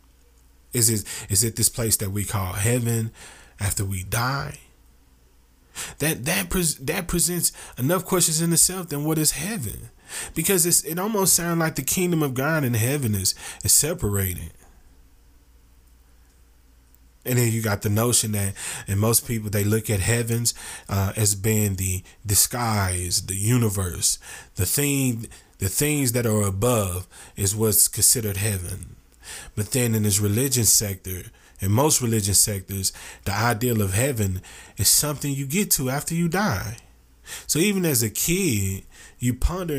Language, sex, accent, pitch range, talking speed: English, male, American, 90-145 Hz, 155 wpm